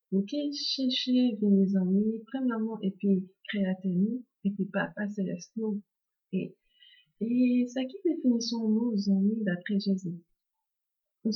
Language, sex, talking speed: English, female, 130 wpm